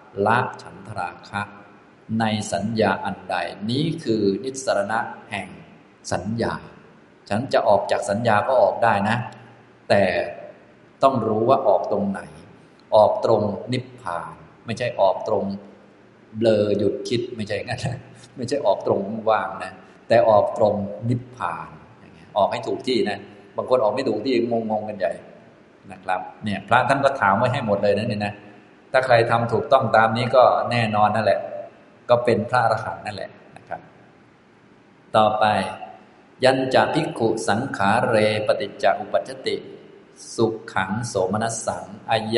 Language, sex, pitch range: Thai, male, 100-125 Hz